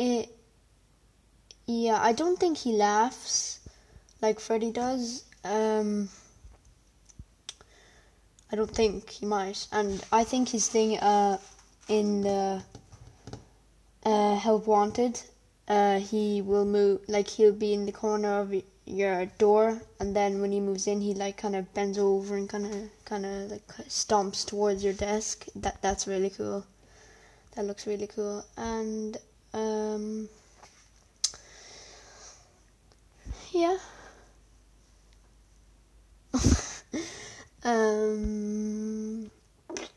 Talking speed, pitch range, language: 115 wpm, 195-220 Hz, English